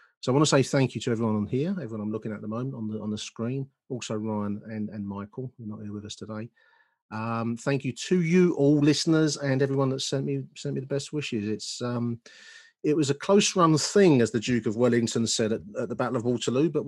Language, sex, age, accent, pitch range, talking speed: English, male, 40-59, British, 115-150 Hz, 260 wpm